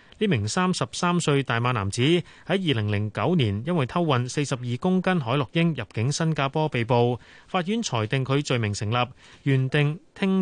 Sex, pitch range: male, 120-160 Hz